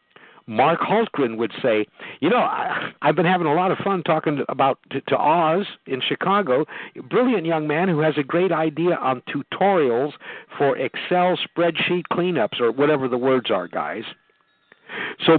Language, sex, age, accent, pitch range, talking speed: English, male, 60-79, American, 140-175 Hz, 170 wpm